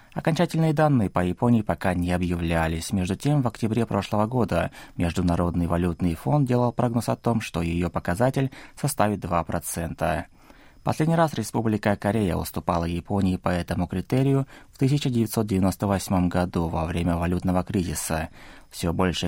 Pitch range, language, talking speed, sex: 85-120 Hz, Russian, 135 wpm, male